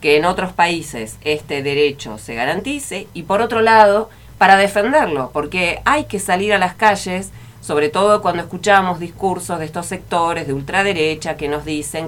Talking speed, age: 170 wpm, 40-59